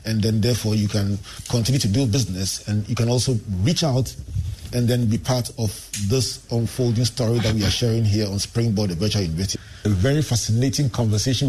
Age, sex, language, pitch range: 40-59, male, English, 105-130 Hz